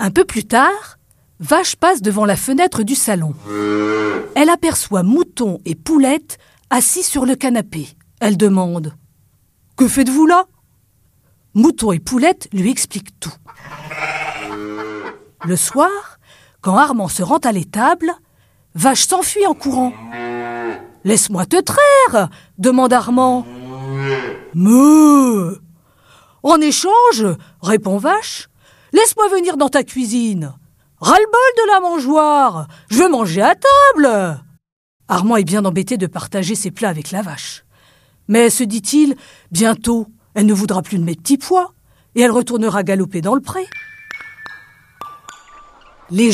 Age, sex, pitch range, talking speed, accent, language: 50-69, female, 175-290 Hz, 125 wpm, French, French